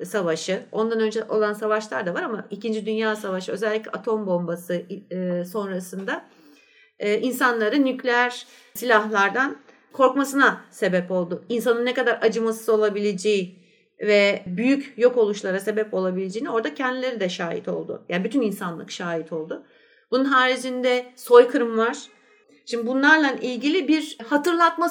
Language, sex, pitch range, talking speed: Turkish, female, 205-280 Hz, 125 wpm